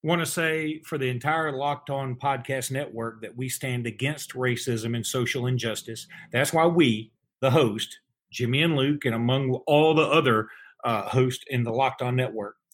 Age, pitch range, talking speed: 40-59, 120-155 Hz, 180 wpm